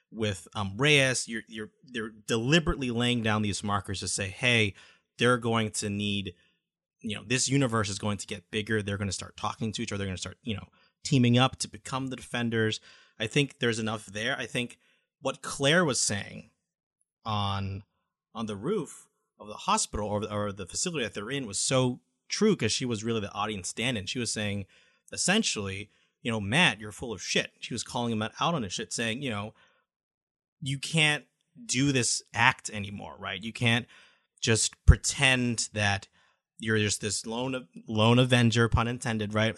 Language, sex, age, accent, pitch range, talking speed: English, male, 30-49, American, 105-125 Hz, 190 wpm